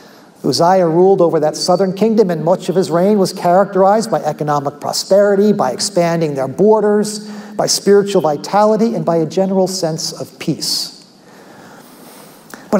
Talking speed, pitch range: 145 wpm, 150-190 Hz